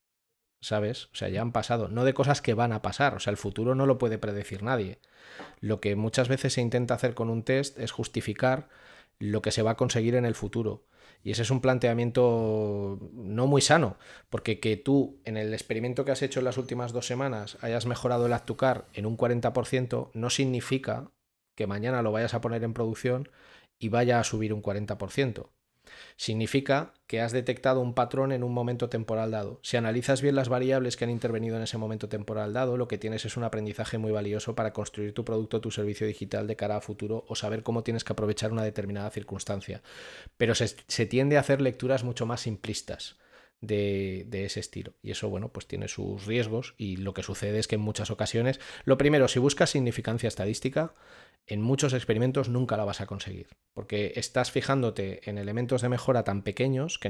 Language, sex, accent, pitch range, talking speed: Spanish, male, Spanish, 105-125 Hz, 205 wpm